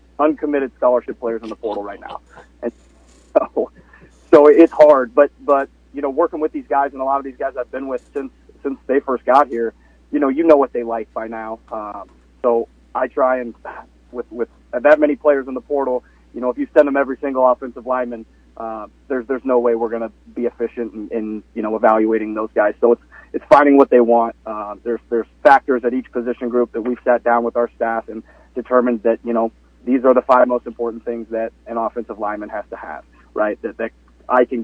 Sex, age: male, 30-49